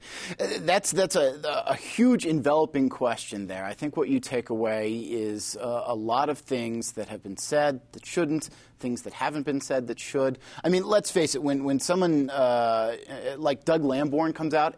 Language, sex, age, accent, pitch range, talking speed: English, male, 30-49, American, 125-170 Hz, 190 wpm